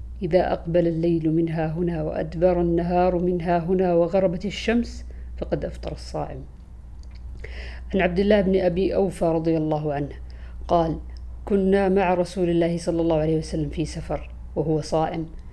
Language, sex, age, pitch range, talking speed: Arabic, female, 50-69, 150-185 Hz, 140 wpm